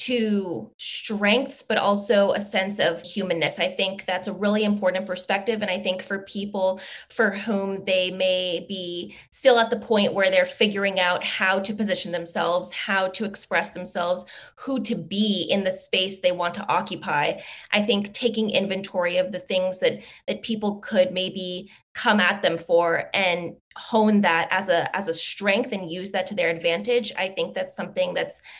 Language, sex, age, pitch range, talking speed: English, female, 20-39, 180-220 Hz, 180 wpm